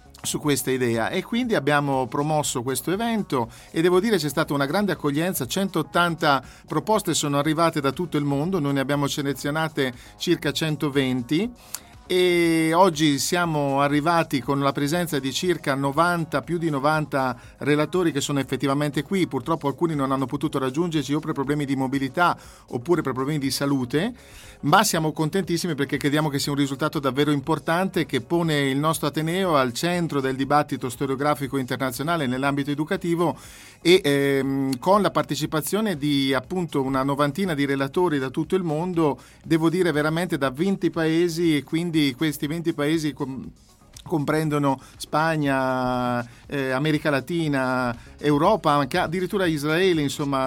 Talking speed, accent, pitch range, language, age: 150 wpm, native, 135-170 Hz, Italian, 50-69